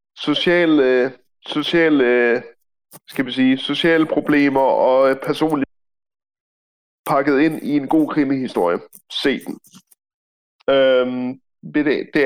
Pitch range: 140-180 Hz